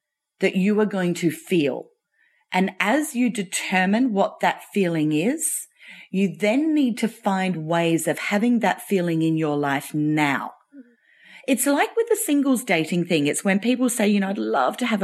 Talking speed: 180 wpm